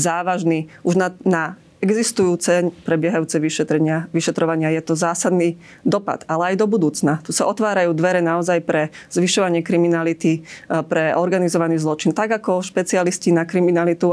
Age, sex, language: 30-49, female, Slovak